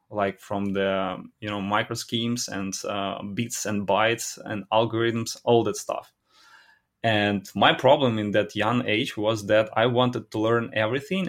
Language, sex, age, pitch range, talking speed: English, male, 20-39, 100-115 Hz, 165 wpm